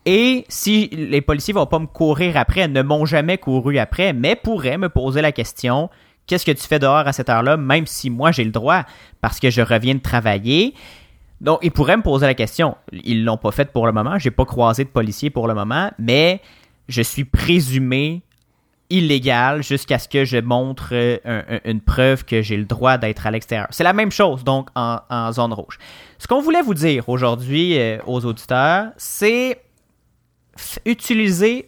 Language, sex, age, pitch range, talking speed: French, male, 30-49, 120-165 Hz, 205 wpm